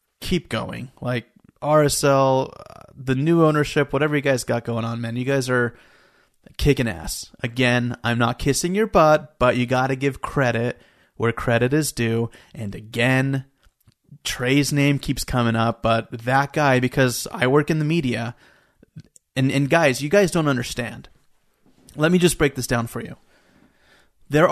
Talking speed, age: 165 wpm, 30-49